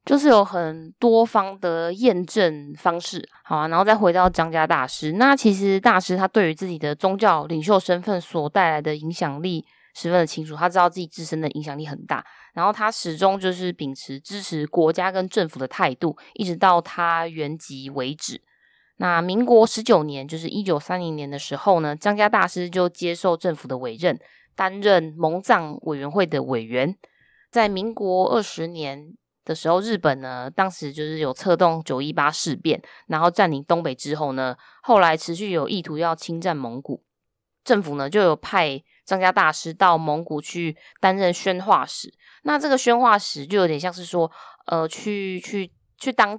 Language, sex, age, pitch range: Chinese, female, 20-39, 150-190 Hz